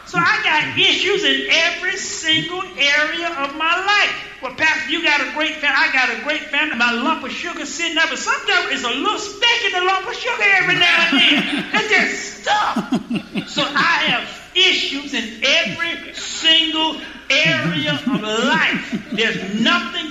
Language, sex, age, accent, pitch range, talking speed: English, male, 40-59, American, 235-345 Hz, 180 wpm